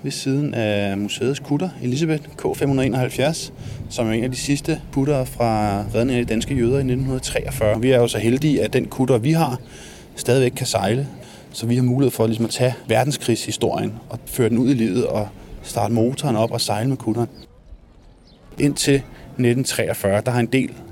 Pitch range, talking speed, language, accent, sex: 110-135 Hz, 180 wpm, Danish, native, male